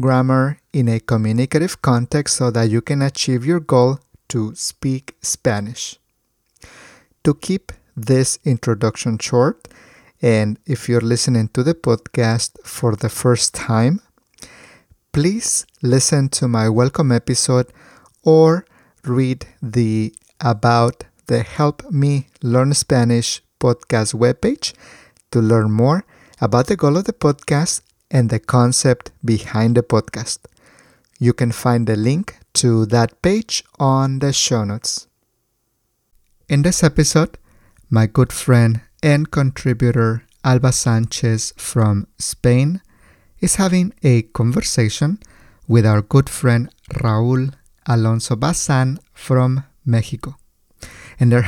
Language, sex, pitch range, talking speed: English, male, 115-140 Hz, 120 wpm